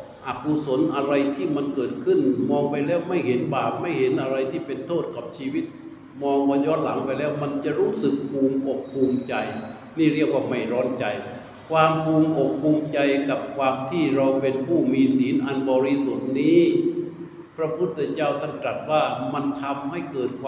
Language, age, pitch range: Thai, 60-79, 130-160 Hz